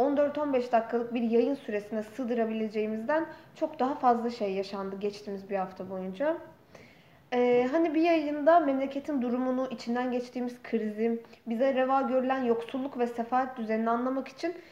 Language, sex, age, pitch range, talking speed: Turkish, female, 10-29, 225-290 Hz, 135 wpm